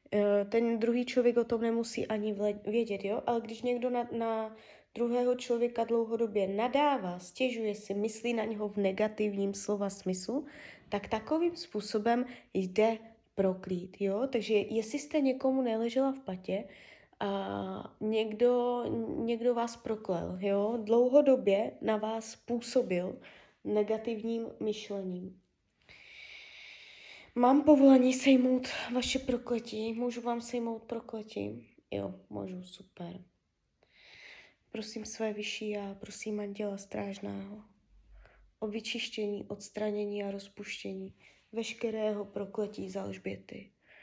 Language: Czech